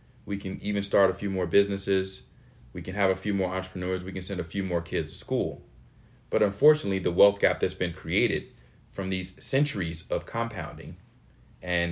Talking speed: 190 wpm